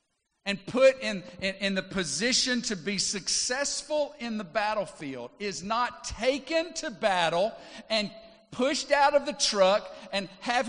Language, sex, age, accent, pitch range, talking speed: English, male, 50-69, American, 150-240 Hz, 145 wpm